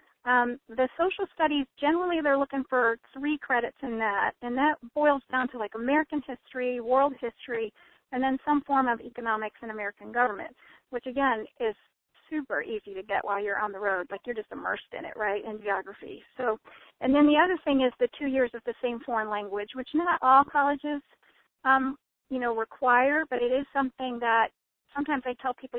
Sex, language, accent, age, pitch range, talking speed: female, English, American, 40-59, 235-280 Hz, 195 wpm